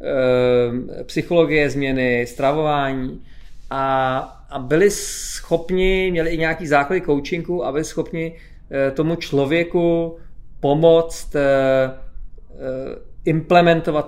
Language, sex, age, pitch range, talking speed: Czech, male, 40-59, 135-170 Hz, 75 wpm